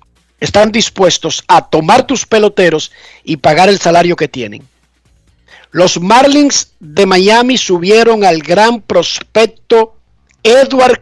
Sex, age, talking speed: male, 50-69, 115 wpm